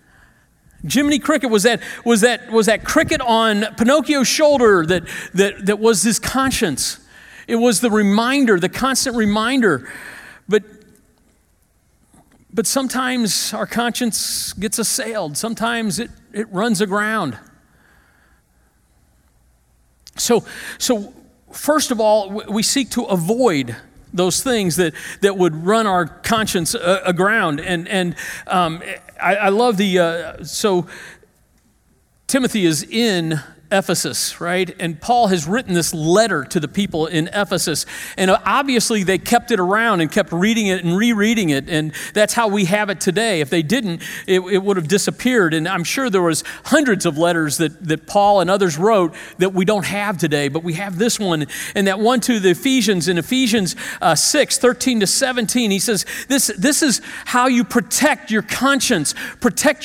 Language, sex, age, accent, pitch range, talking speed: English, male, 50-69, American, 180-240 Hz, 155 wpm